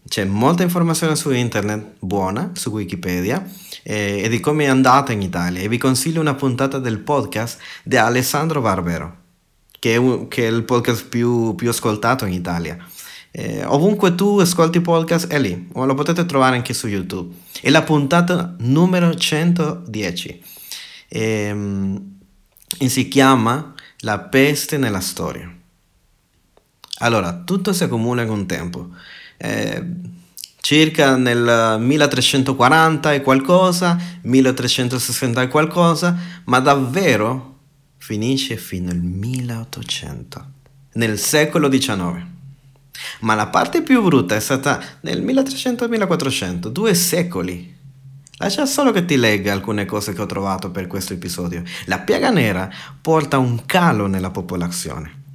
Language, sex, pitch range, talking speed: Italian, male, 105-155 Hz, 135 wpm